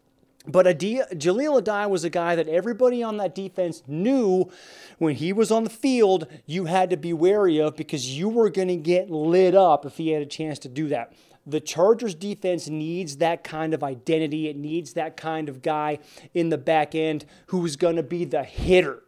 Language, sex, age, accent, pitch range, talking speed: English, male, 30-49, American, 155-185 Hz, 210 wpm